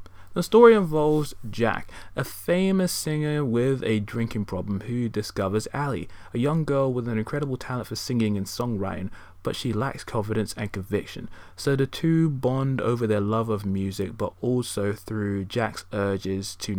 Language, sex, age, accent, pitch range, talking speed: English, male, 20-39, British, 100-130 Hz, 165 wpm